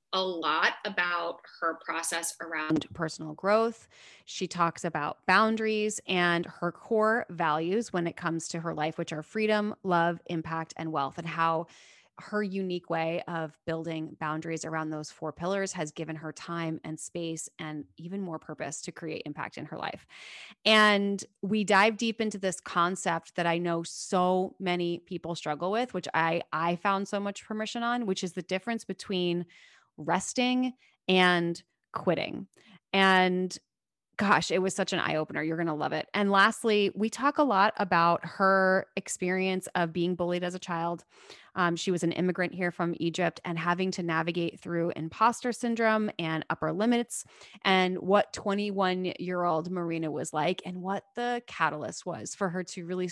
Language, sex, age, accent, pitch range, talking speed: English, female, 20-39, American, 165-195 Hz, 165 wpm